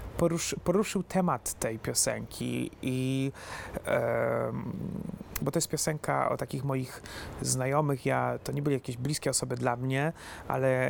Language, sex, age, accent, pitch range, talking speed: Polish, male, 30-49, native, 125-155 Hz, 140 wpm